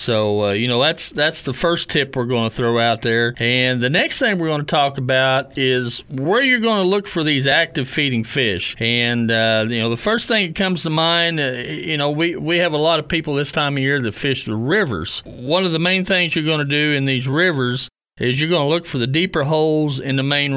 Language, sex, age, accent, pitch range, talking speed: English, male, 40-59, American, 120-155 Hz, 255 wpm